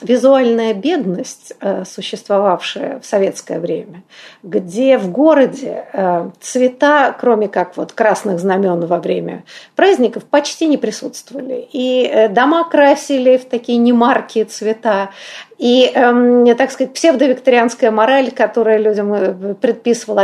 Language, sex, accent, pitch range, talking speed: Russian, female, native, 205-265 Hz, 105 wpm